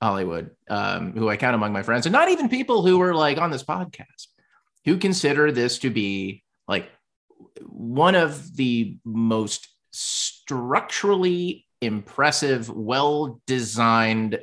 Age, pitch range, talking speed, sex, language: 30-49, 115-150 Hz, 130 wpm, male, English